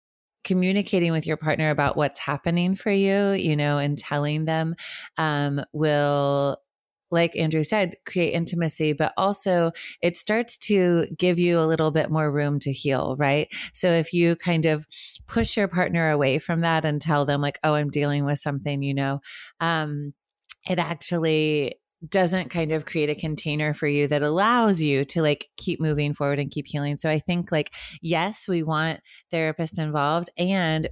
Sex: female